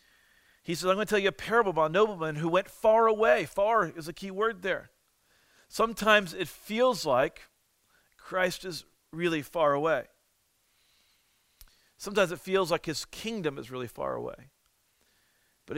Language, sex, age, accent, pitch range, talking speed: English, male, 40-59, American, 145-185 Hz, 160 wpm